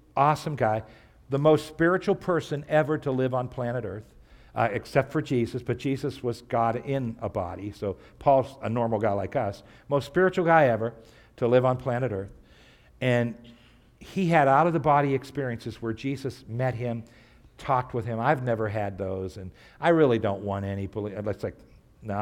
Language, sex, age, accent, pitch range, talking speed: English, male, 50-69, American, 115-145 Hz, 175 wpm